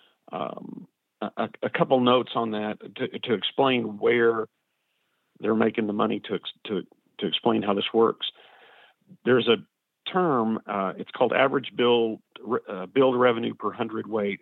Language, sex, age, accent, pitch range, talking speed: English, male, 50-69, American, 105-120 Hz, 150 wpm